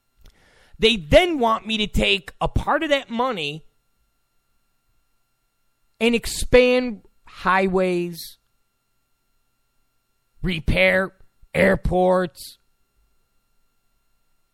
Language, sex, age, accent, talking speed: English, male, 40-59, American, 65 wpm